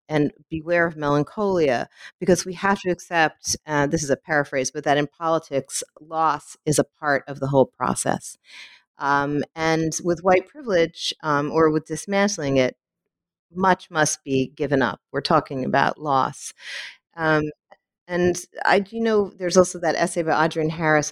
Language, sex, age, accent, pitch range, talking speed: English, female, 40-59, American, 145-175 Hz, 160 wpm